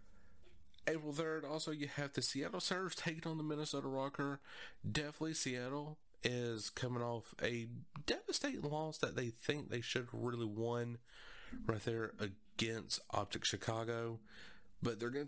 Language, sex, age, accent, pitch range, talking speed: English, male, 30-49, American, 100-125 Hz, 145 wpm